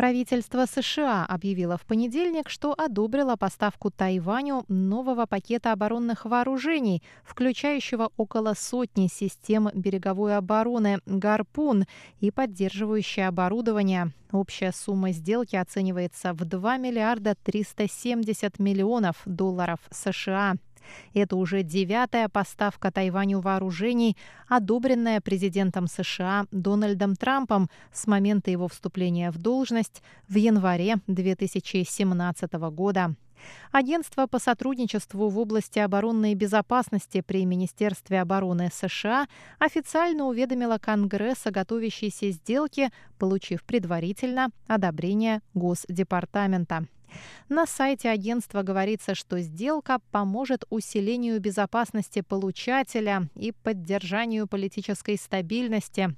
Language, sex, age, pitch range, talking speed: Russian, female, 20-39, 185-230 Hz, 95 wpm